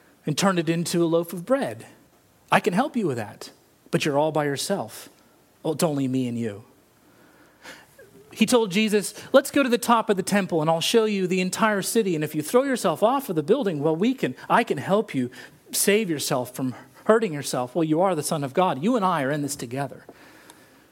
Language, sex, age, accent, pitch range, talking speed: English, male, 40-59, American, 145-195 Hz, 225 wpm